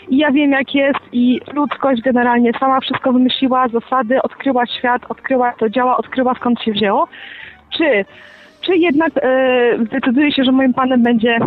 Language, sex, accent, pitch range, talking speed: Polish, female, native, 235-290 Hz, 160 wpm